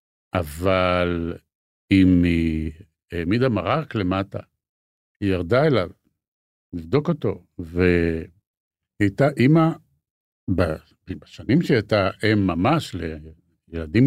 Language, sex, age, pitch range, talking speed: Hebrew, male, 60-79, 95-145 Hz, 85 wpm